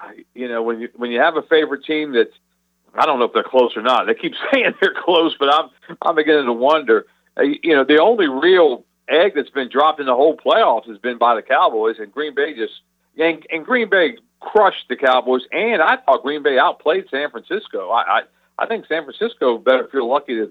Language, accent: English, American